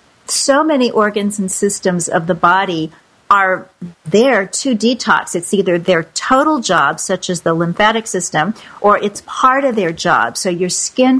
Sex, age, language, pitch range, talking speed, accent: female, 50-69, English, 180-230 Hz, 165 wpm, American